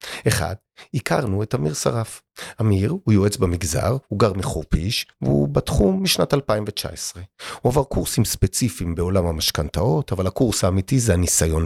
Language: Hebrew